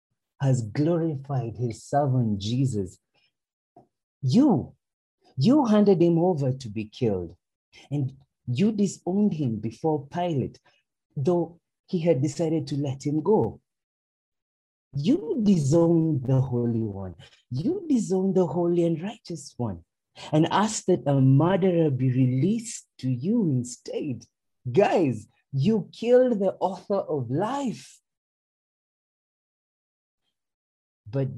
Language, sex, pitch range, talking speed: English, male, 120-185 Hz, 110 wpm